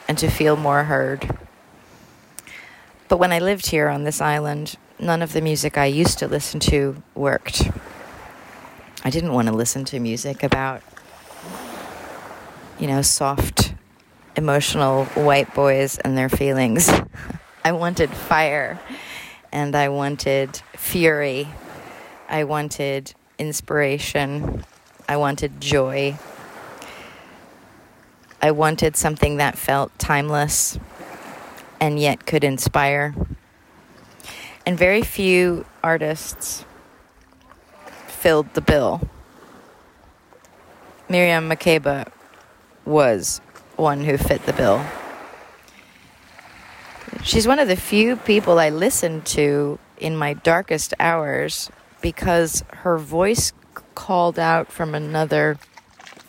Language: English